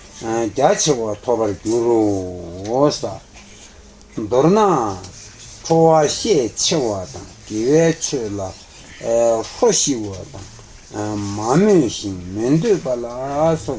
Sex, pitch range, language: male, 100-135 Hz, Italian